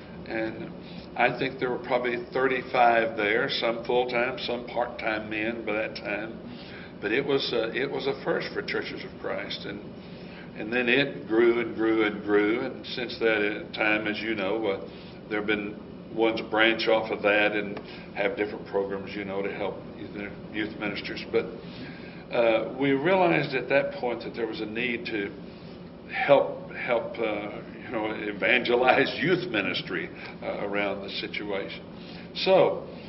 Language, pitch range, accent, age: English, 105-120 Hz, American, 60-79